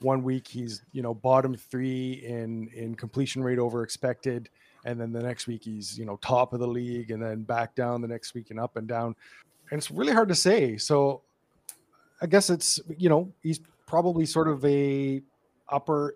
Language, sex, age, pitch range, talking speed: English, male, 30-49, 120-145 Hz, 200 wpm